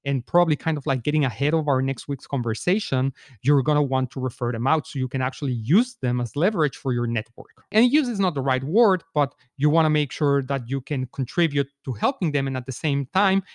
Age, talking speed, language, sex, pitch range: 40-59, 250 wpm, English, male, 130-160 Hz